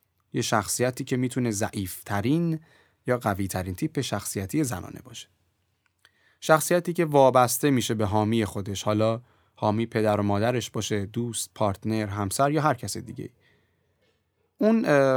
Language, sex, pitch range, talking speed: Persian, male, 100-140 Hz, 130 wpm